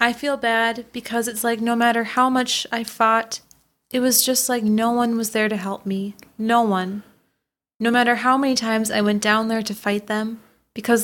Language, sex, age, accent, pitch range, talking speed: English, female, 20-39, American, 205-235 Hz, 205 wpm